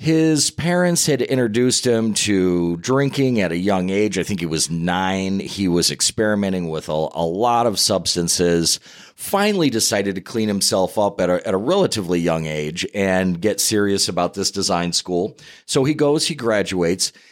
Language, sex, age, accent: English, male, 40-59, American